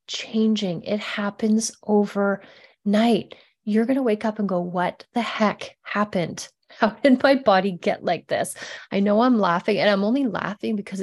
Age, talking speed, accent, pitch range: 30-49, 170 wpm, American, 185-225 Hz